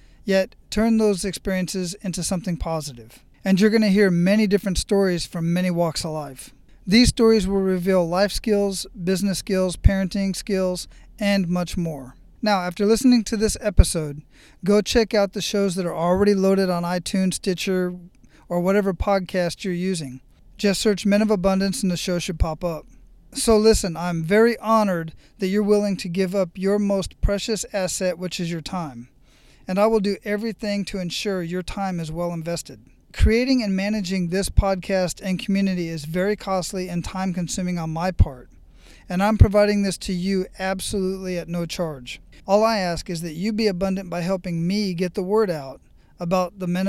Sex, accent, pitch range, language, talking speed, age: male, American, 175-200 Hz, English, 180 wpm, 40-59